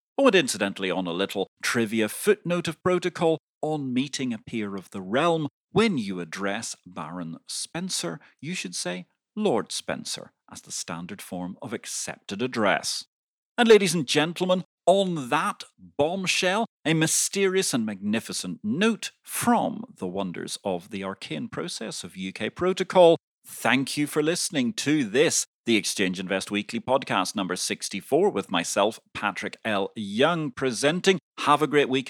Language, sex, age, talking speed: English, male, 40-59, 145 wpm